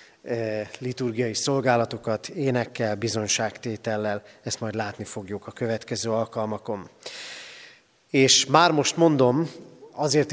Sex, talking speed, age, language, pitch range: male, 95 wpm, 30-49, Hungarian, 115-135 Hz